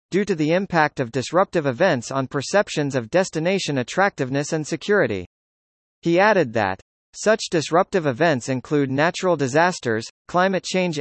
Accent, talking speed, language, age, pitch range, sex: American, 135 wpm, English, 40-59, 135-185 Hz, male